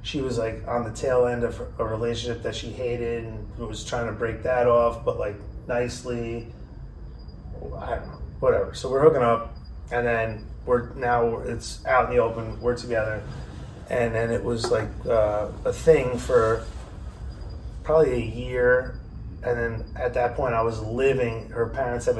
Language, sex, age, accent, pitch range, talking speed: English, male, 30-49, American, 105-125 Hz, 175 wpm